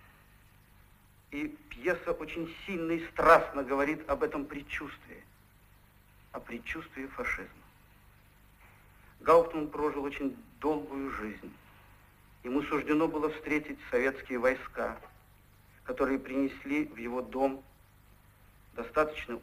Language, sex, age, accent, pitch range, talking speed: Russian, male, 50-69, native, 105-160 Hz, 95 wpm